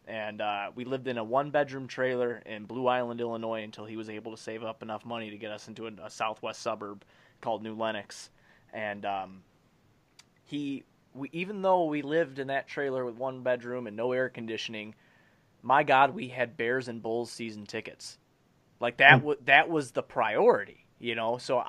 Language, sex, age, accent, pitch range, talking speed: English, male, 20-39, American, 110-135 Hz, 190 wpm